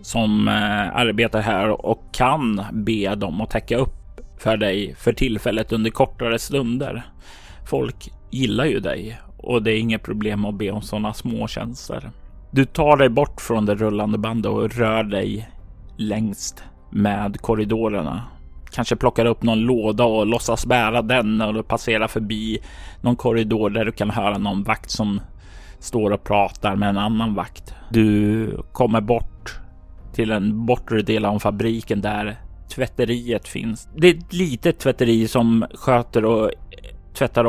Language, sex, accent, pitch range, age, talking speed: Swedish, male, native, 105-120 Hz, 30-49, 150 wpm